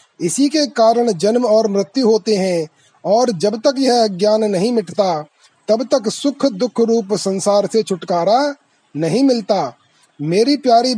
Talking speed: 150 wpm